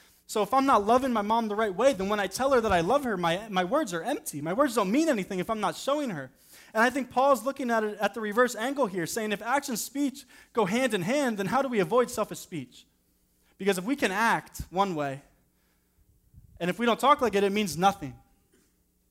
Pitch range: 170-235 Hz